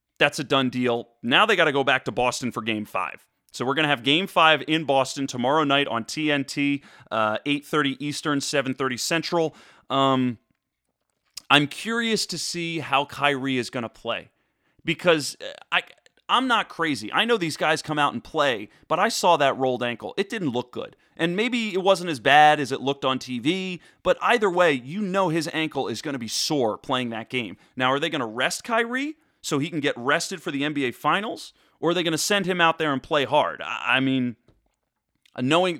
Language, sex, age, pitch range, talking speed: English, male, 30-49, 130-165 Hz, 210 wpm